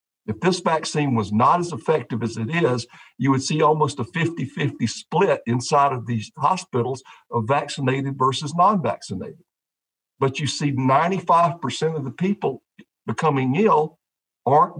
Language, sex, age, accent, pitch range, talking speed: English, male, 50-69, American, 120-160 Hz, 140 wpm